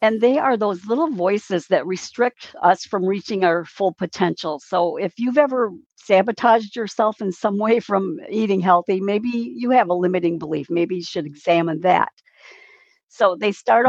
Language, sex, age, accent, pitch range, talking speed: English, female, 60-79, American, 170-220 Hz, 175 wpm